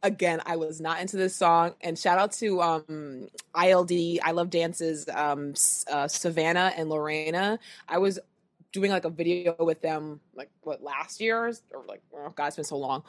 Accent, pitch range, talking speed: American, 170-225 Hz, 190 wpm